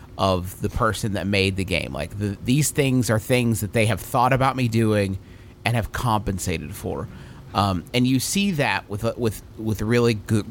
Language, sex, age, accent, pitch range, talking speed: English, male, 30-49, American, 95-120 Hz, 195 wpm